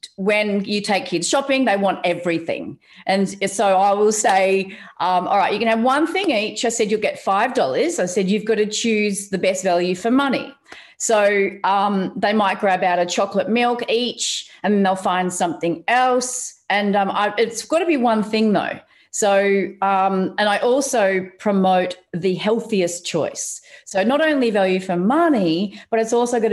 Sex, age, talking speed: female, 40-59, 185 wpm